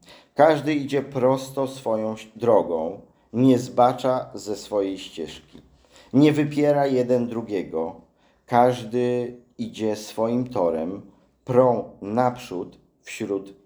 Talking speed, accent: 90 wpm, Polish